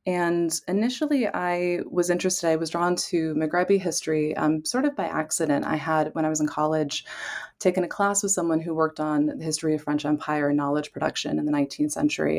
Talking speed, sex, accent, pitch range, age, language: 210 wpm, female, American, 145-170 Hz, 20-39, English